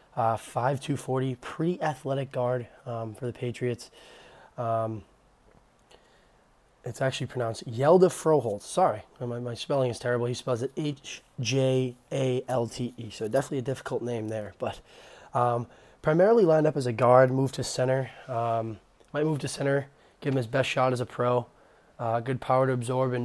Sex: male